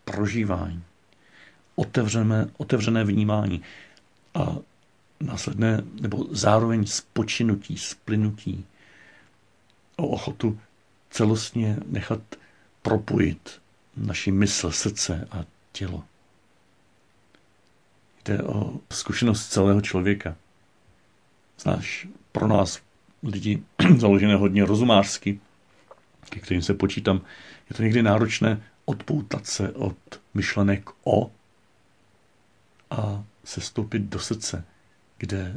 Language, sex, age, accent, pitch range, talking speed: Czech, male, 50-69, native, 95-110 Hz, 85 wpm